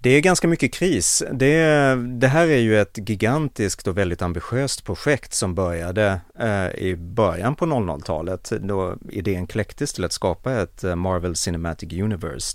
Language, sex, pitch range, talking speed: Swedish, male, 90-120 Hz, 160 wpm